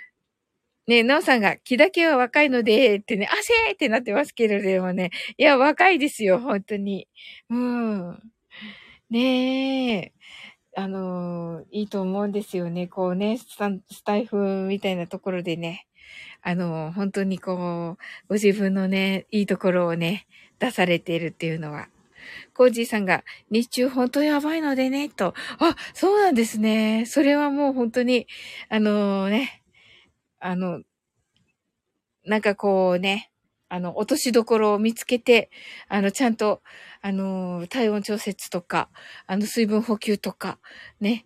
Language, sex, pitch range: Japanese, female, 190-250 Hz